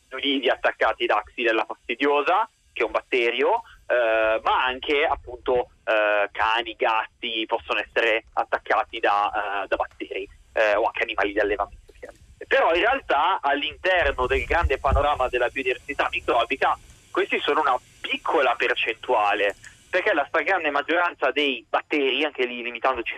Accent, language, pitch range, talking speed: native, Italian, 120-175 Hz, 135 wpm